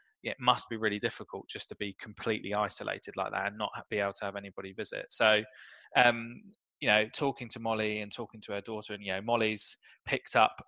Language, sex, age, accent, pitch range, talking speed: English, male, 20-39, British, 105-125 Hz, 215 wpm